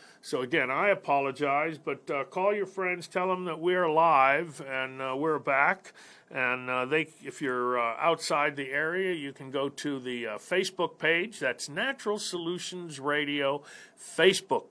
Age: 50-69